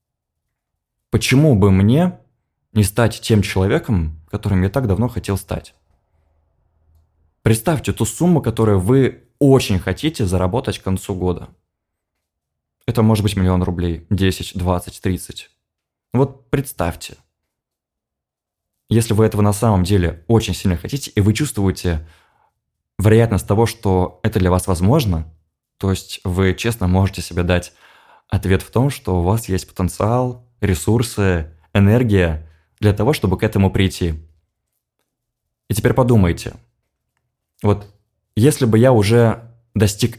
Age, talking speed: 20-39, 125 wpm